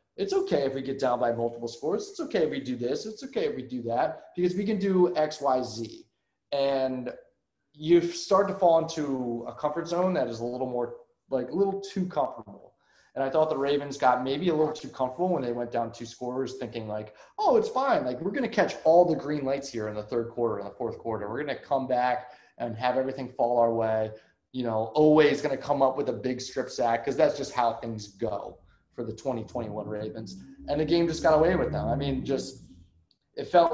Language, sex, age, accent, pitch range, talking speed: English, male, 20-39, American, 115-155 Hz, 235 wpm